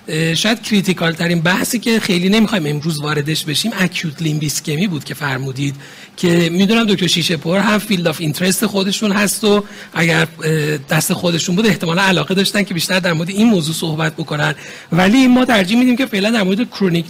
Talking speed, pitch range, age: 175 wpm, 170-220 Hz, 40-59